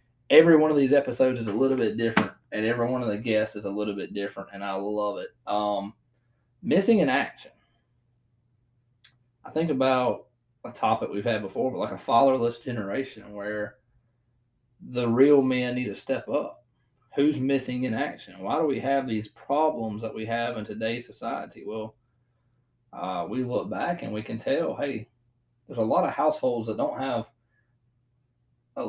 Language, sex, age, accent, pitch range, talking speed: English, male, 20-39, American, 115-125 Hz, 175 wpm